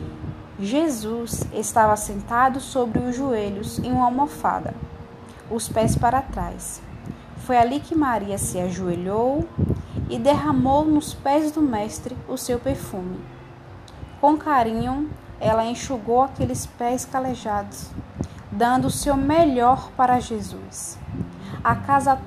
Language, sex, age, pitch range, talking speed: Portuguese, female, 10-29, 210-280 Hz, 115 wpm